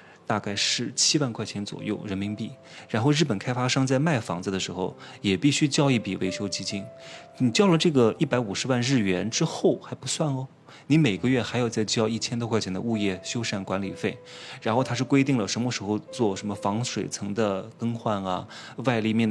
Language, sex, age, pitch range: Chinese, male, 20-39, 100-125 Hz